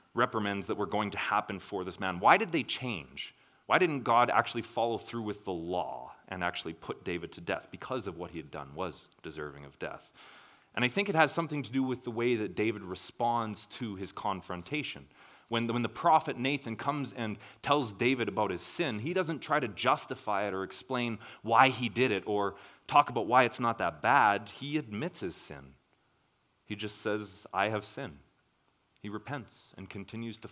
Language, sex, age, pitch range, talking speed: English, male, 30-49, 90-120 Hz, 200 wpm